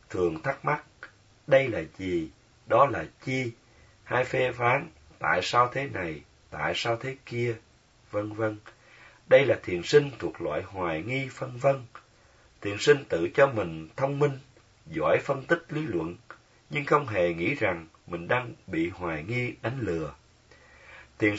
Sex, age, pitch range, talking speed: male, 30-49, 90-135 Hz, 160 wpm